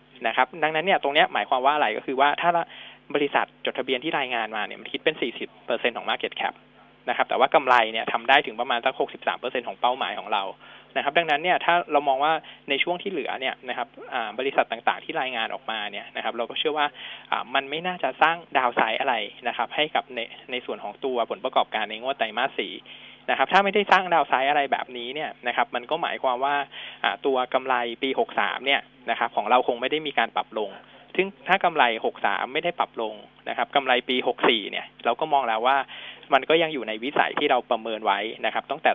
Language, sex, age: Thai, male, 20-39